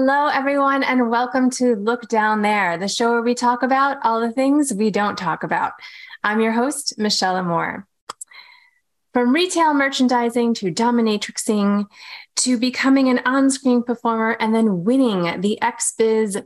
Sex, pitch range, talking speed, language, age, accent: female, 195-250 Hz, 150 wpm, English, 20-39, American